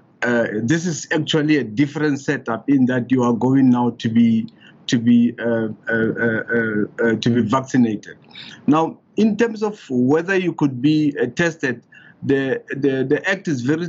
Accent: South African